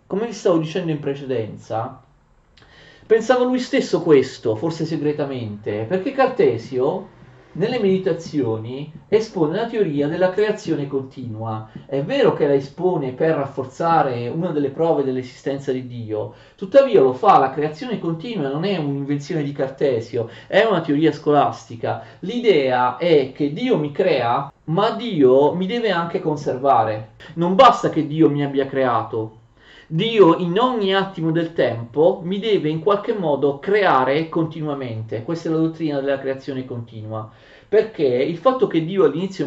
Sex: male